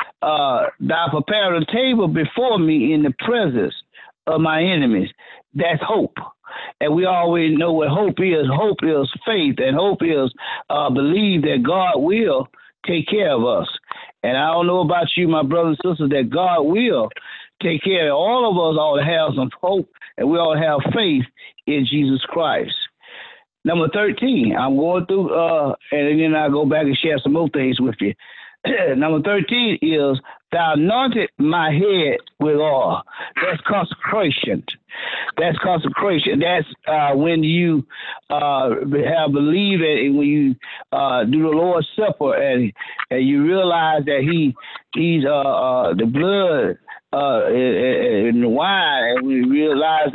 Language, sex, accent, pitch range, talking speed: English, male, American, 145-185 Hz, 160 wpm